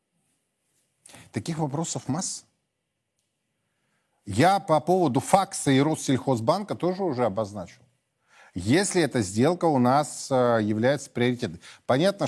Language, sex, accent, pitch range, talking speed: Russian, male, native, 110-150 Hz, 100 wpm